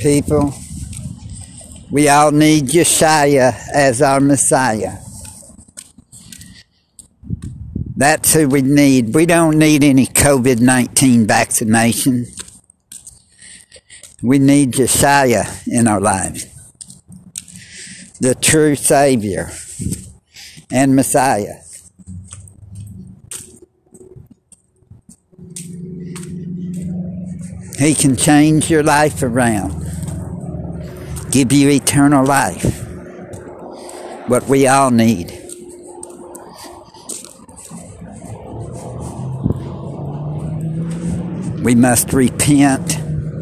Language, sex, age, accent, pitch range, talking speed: English, male, 60-79, American, 120-150 Hz, 65 wpm